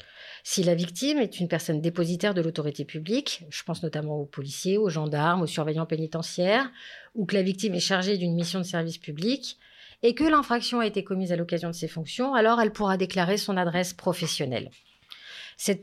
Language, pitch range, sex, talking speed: French, 170-215 Hz, female, 190 wpm